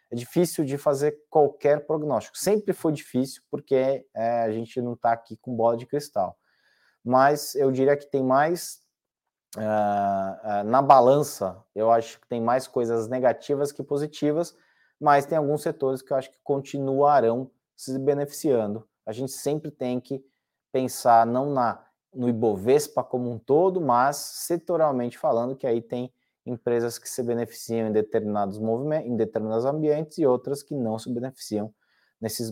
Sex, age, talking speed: male, 20-39, 160 wpm